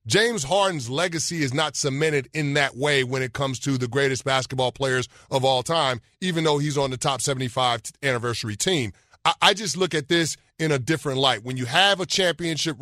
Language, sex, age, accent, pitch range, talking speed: English, male, 30-49, American, 130-160 Hz, 210 wpm